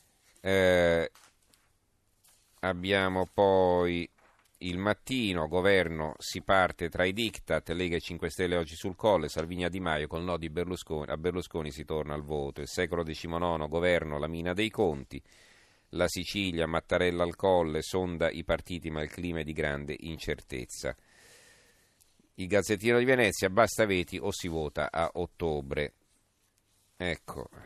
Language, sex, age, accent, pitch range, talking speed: Italian, male, 40-59, native, 80-95 Hz, 145 wpm